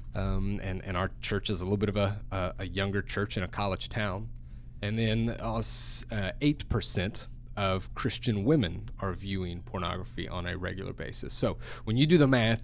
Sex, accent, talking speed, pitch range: male, American, 190 wpm, 95-120 Hz